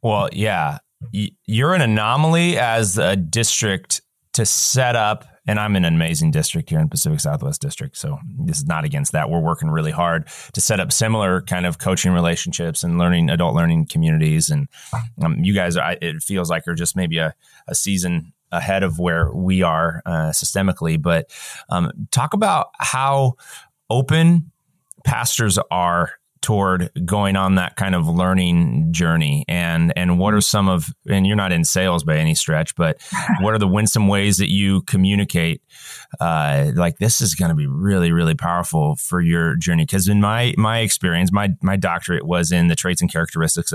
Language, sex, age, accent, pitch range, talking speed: English, male, 30-49, American, 85-115 Hz, 180 wpm